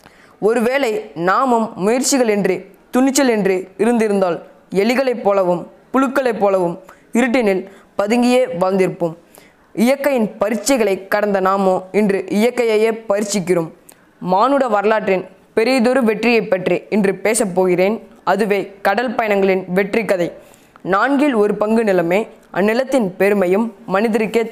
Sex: female